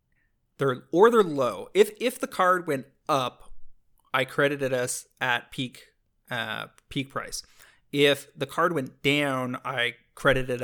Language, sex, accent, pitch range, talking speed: English, male, American, 125-150 Hz, 135 wpm